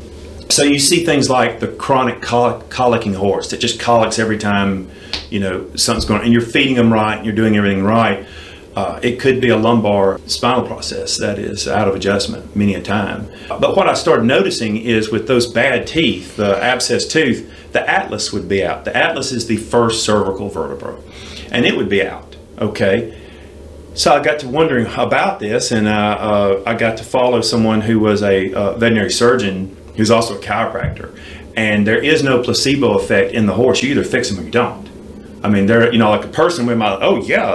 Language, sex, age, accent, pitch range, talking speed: English, male, 40-59, American, 95-120 Hz, 210 wpm